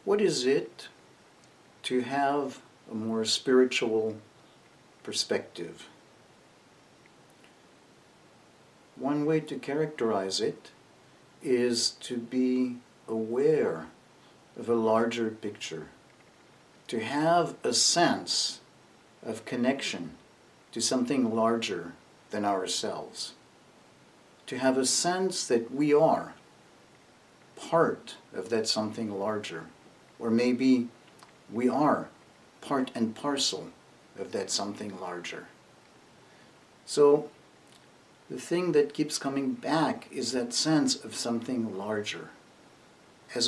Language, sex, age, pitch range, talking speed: English, male, 50-69, 110-135 Hz, 95 wpm